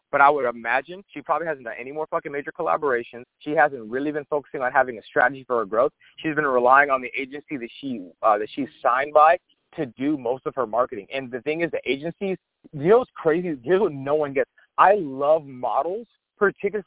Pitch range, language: 150-210 Hz, English